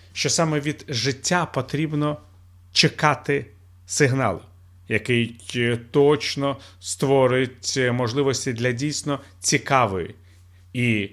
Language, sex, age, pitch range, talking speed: Ukrainian, male, 40-59, 90-150 Hz, 80 wpm